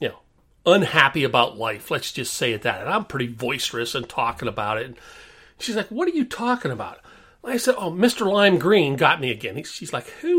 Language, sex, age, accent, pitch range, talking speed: English, male, 40-59, American, 120-200 Hz, 200 wpm